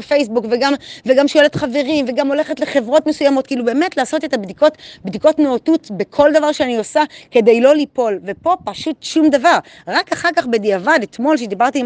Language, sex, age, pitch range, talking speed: Hebrew, female, 30-49, 225-295 Hz, 165 wpm